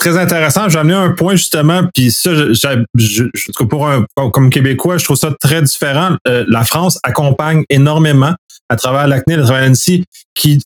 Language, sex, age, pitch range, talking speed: French, male, 30-49, 135-165 Hz, 185 wpm